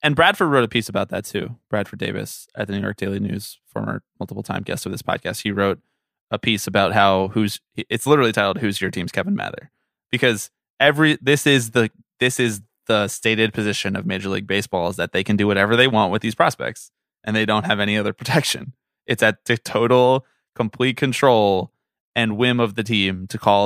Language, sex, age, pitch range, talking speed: English, male, 20-39, 100-125 Hz, 210 wpm